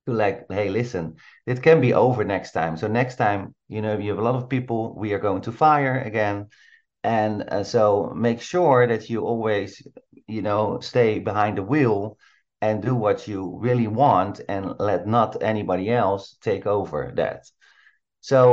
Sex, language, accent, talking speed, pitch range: male, English, Dutch, 180 wpm, 100-125 Hz